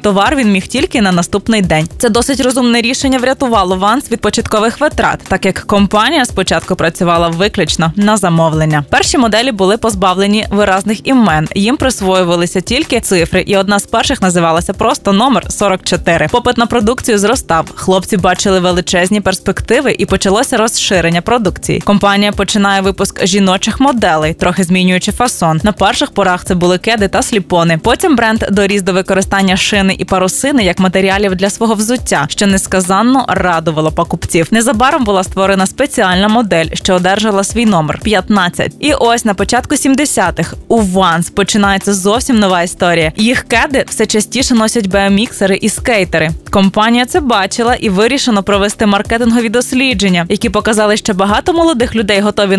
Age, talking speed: 20-39, 150 wpm